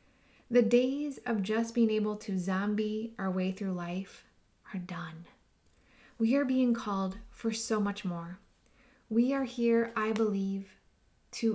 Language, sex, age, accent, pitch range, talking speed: English, female, 20-39, American, 200-245 Hz, 145 wpm